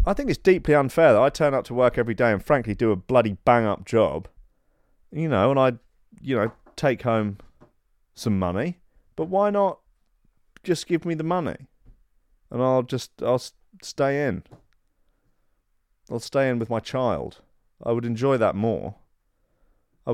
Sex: male